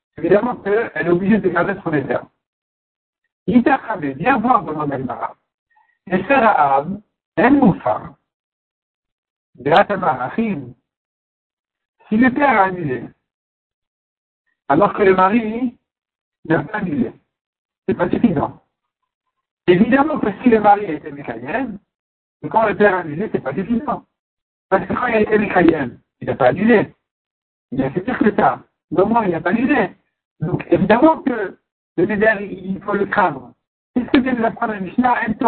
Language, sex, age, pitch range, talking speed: French, male, 60-79, 175-240 Hz, 155 wpm